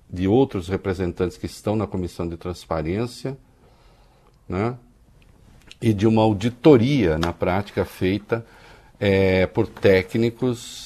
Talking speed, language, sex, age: 110 wpm, Portuguese, male, 50-69